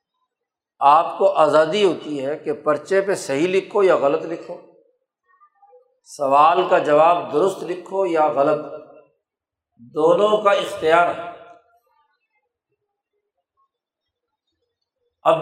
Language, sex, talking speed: Urdu, male, 95 wpm